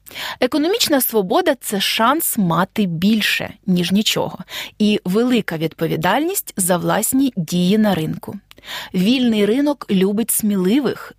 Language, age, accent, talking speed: Ukrainian, 30-49, native, 115 wpm